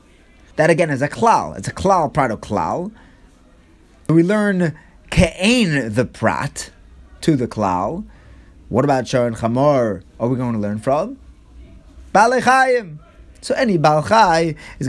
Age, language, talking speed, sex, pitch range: 30-49, English, 140 wpm, male, 95-150 Hz